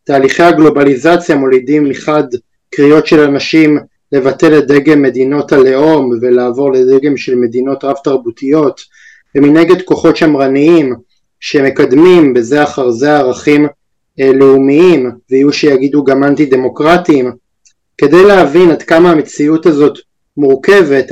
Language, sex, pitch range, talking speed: Hebrew, male, 135-155 Hz, 110 wpm